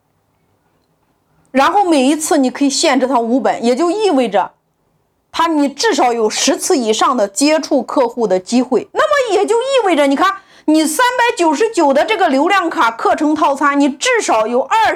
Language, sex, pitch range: Chinese, female, 260-380 Hz